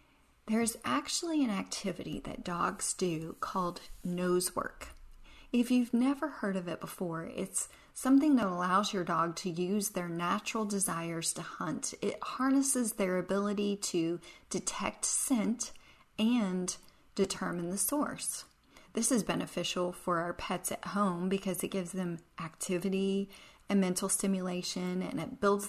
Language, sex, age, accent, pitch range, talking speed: English, female, 40-59, American, 180-220 Hz, 140 wpm